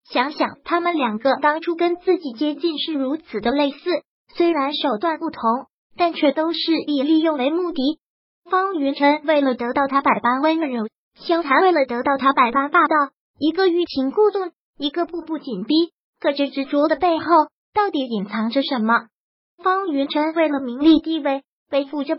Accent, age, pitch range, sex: native, 30-49, 275-330 Hz, male